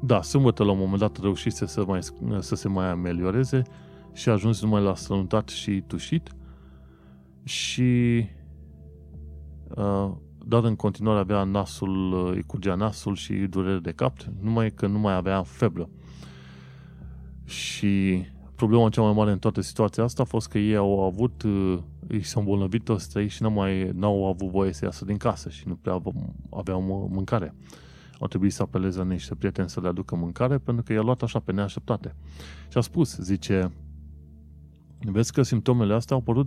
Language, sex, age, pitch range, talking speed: Romanian, male, 20-39, 75-105 Hz, 165 wpm